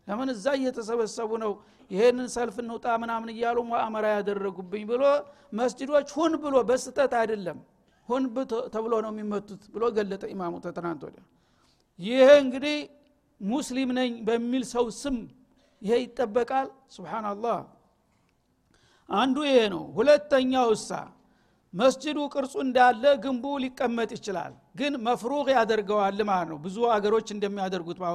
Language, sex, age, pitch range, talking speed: Amharic, male, 60-79, 220-270 Hz, 30 wpm